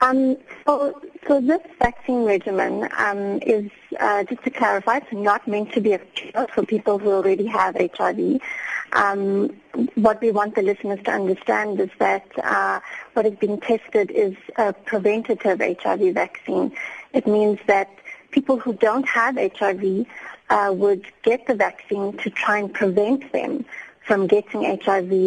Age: 30-49